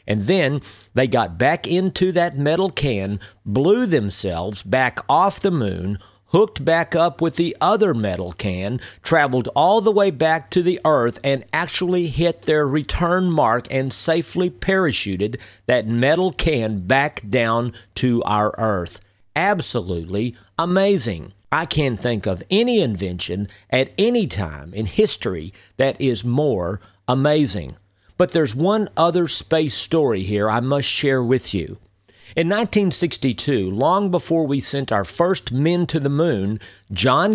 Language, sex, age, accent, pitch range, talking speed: English, male, 50-69, American, 105-165 Hz, 145 wpm